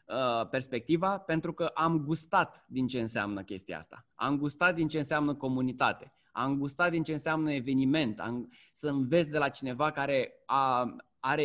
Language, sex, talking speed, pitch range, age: Romanian, male, 150 wpm, 130-165 Hz, 20-39